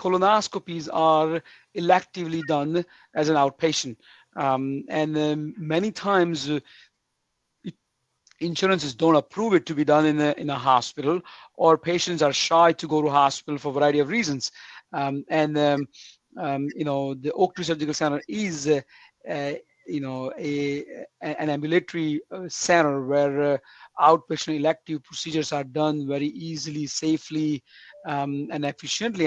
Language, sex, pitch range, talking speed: English, male, 145-160 Hz, 150 wpm